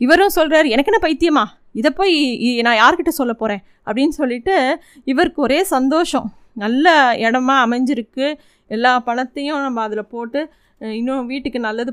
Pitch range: 235-295 Hz